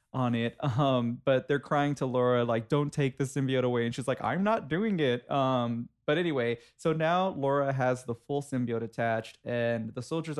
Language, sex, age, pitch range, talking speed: English, male, 20-39, 120-150 Hz, 200 wpm